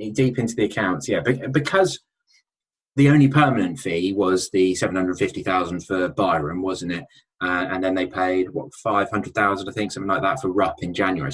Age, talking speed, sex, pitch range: 20-39, 175 wpm, male, 90-130 Hz